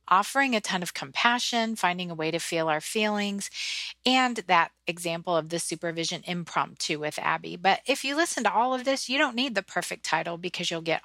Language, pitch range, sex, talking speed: English, 170-215 Hz, female, 205 wpm